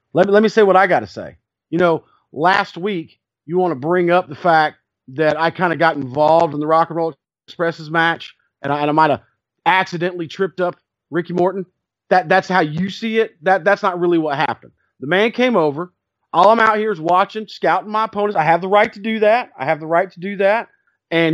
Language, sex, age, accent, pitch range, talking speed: English, male, 40-59, American, 160-205 Hz, 235 wpm